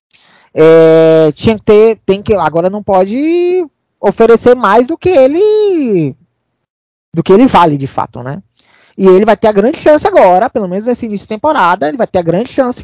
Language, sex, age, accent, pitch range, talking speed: Portuguese, male, 20-39, Brazilian, 165-235 Hz, 190 wpm